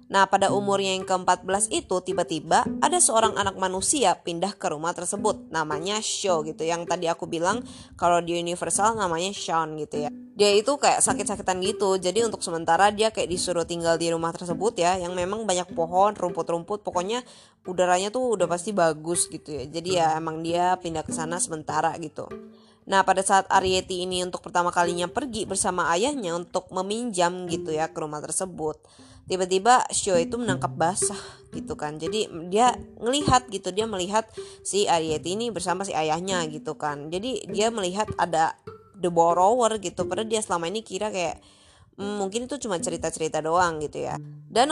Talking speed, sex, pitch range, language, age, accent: 170 wpm, female, 170-220 Hz, Indonesian, 20-39, native